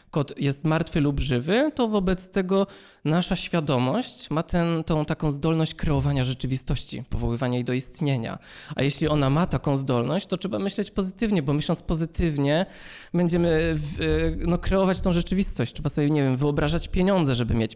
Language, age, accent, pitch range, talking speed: Polish, 20-39, native, 130-170 Hz, 160 wpm